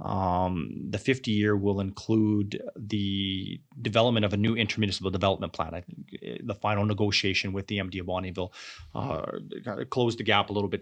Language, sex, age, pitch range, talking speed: English, male, 30-49, 95-110 Hz, 165 wpm